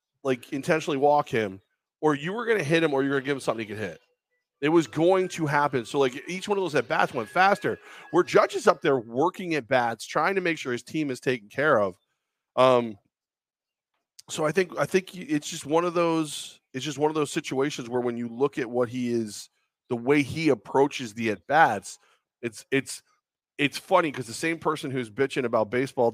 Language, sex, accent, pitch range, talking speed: English, male, American, 125-165 Hz, 220 wpm